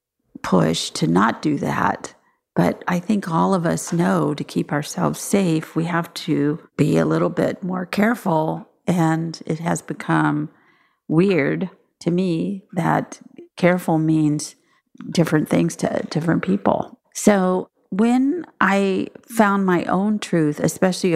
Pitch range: 155-190 Hz